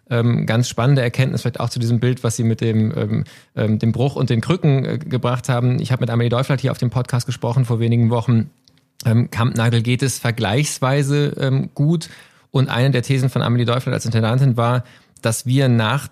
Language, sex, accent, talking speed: German, male, German, 185 wpm